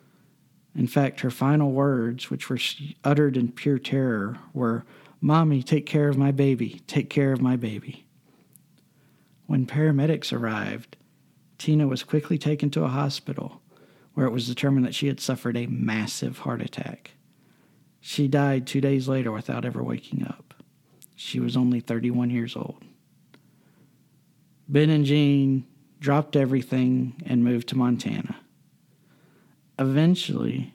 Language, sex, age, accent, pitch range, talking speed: English, male, 50-69, American, 125-145 Hz, 135 wpm